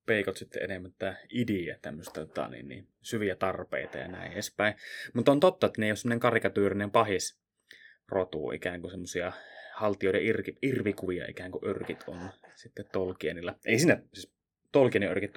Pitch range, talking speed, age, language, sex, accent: 95-115 Hz, 150 wpm, 20-39, Finnish, male, native